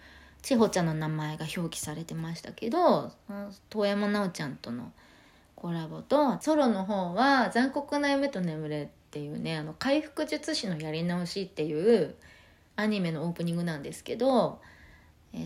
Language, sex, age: Japanese, female, 20-39